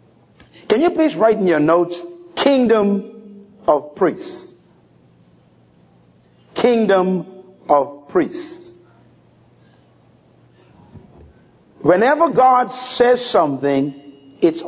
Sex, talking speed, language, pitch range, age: male, 75 wpm, English, 175-285 Hz, 50-69